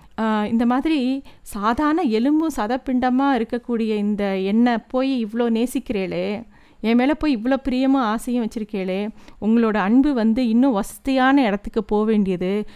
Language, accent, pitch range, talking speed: Tamil, native, 200-245 Hz, 120 wpm